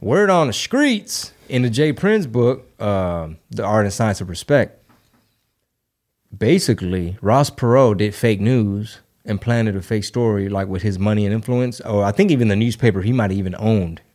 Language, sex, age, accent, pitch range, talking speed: English, male, 30-49, American, 105-130 Hz, 185 wpm